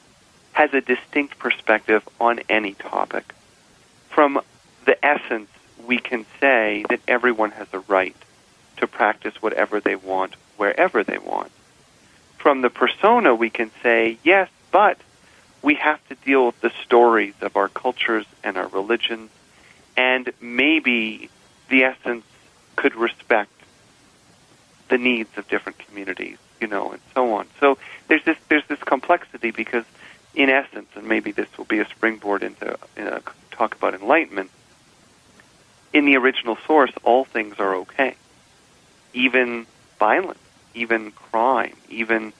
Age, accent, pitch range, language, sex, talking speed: 40-59, American, 105-130 Hz, English, male, 135 wpm